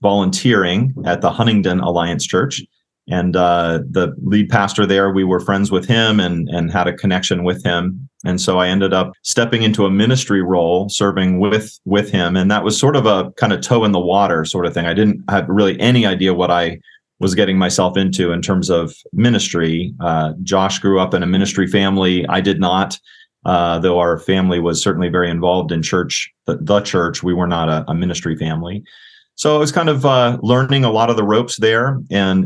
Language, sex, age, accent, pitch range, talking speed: English, male, 30-49, American, 90-105 Hz, 210 wpm